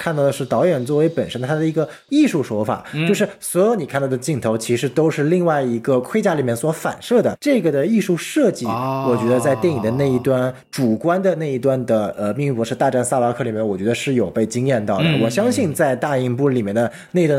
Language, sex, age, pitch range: Chinese, male, 20-39, 125-190 Hz